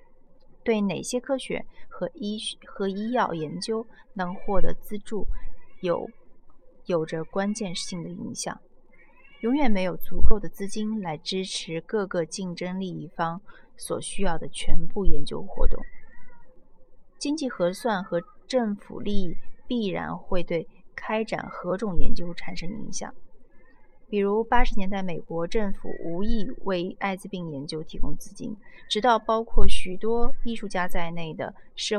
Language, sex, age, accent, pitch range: Chinese, female, 30-49, native, 175-225 Hz